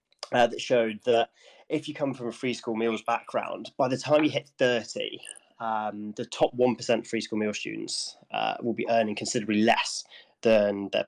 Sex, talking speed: male, 190 wpm